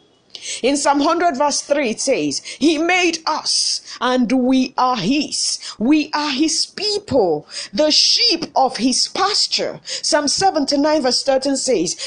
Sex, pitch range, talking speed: female, 265-345 Hz, 140 wpm